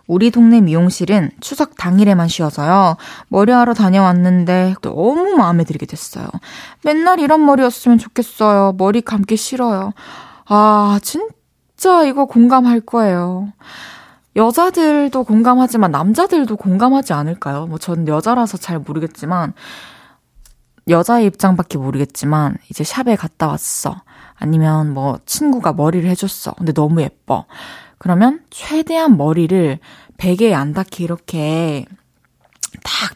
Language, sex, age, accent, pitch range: Korean, female, 20-39, native, 165-230 Hz